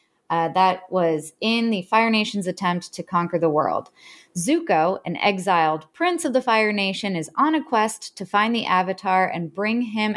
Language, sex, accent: English, female, American